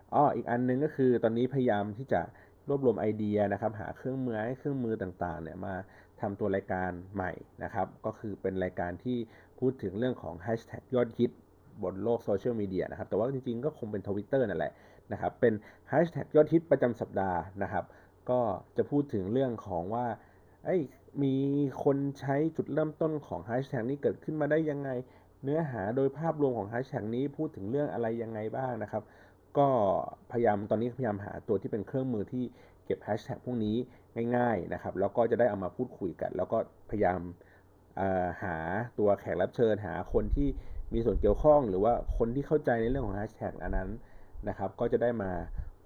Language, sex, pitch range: Thai, male, 95-130 Hz